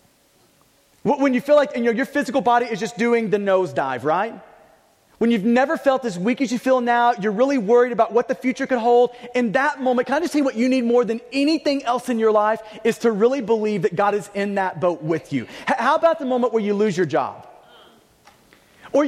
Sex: male